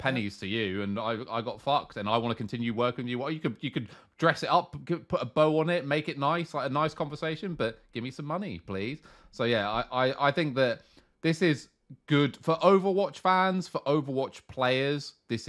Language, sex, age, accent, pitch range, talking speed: English, male, 30-49, British, 105-135 Hz, 230 wpm